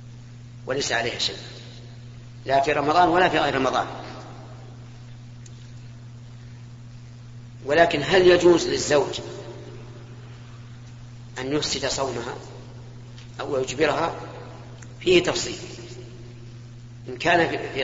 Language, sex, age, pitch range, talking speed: Arabic, female, 40-59, 120-140 Hz, 80 wpm